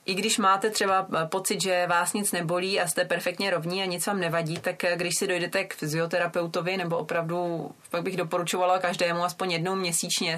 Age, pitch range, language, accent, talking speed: 30-49, 165-185 Hz, Czech, native, 185 wpm